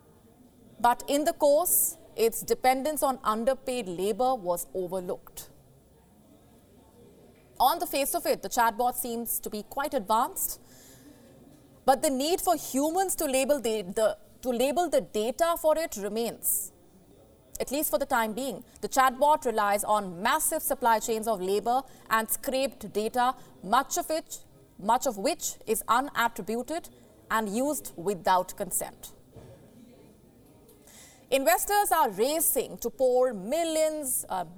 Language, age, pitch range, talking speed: English, 30-49, 220-290 Hz, 130 wpm